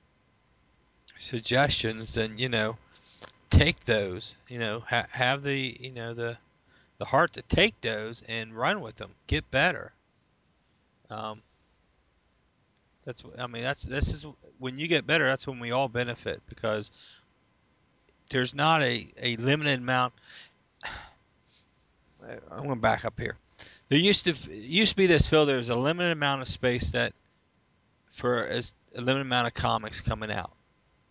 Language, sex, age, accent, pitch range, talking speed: English, male, 40-59, American, 110-130 Hz, 150 wpm